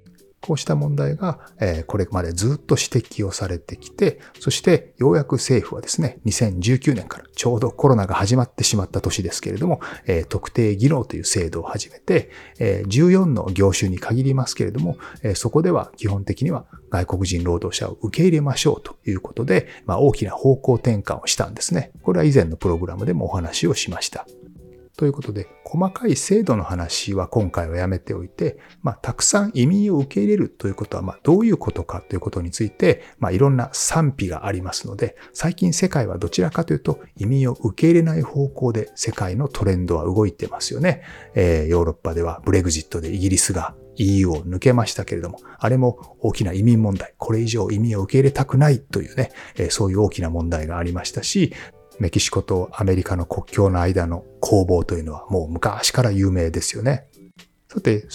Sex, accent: male, native